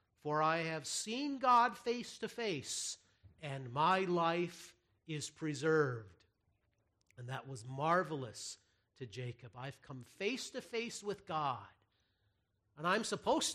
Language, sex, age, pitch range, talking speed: English, male, 50-69, 105-175 Hz, 130 wpm